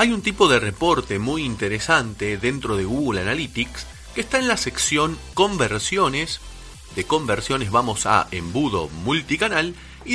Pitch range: 100-150 Hz